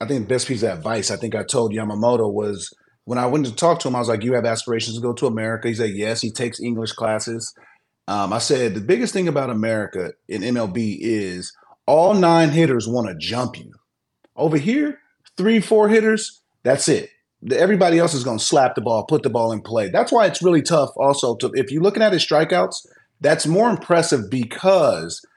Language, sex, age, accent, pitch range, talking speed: English, male, 30-49, American, 115-160 Hz, 220 wpm